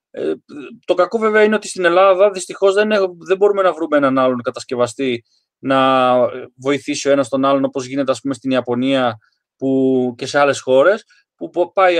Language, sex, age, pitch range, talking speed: Greek, male, 20-39, 145-195 Hz, 185 wpm